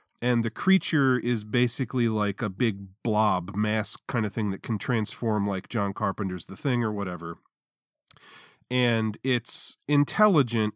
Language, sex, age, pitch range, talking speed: English, male, 40-59, 105-130 Hz, 145 wpm